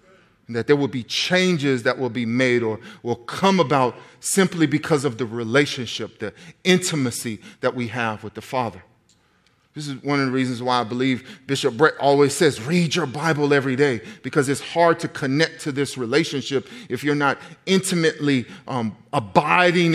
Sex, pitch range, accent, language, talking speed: male, 125-155 Hz, American, English, 175 wpm